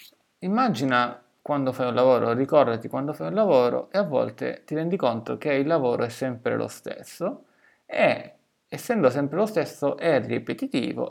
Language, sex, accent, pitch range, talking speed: Italian, male, native, 125-165 Hz, 160 wpm